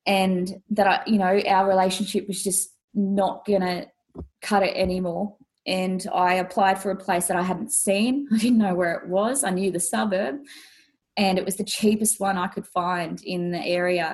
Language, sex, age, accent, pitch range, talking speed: English, female, 20-39, Australian, 170-195 Hz, 195 wpm